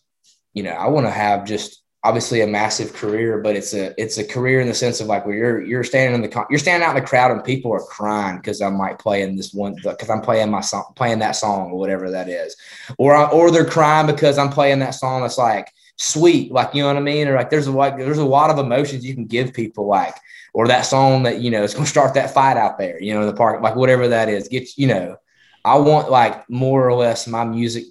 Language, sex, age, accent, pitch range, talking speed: English, male, 20-39, American, 110-140 Hz, 270 wpm